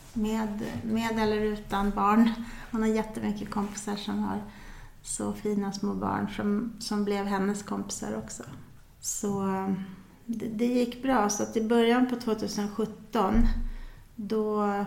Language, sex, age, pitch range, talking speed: Swedish, female, 30-49, 195-220 Hz, 135 wpm